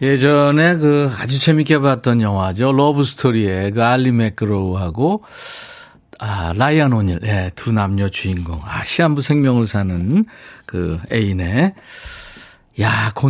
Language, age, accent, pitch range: Korean, 50-69, native, 105-145 Hz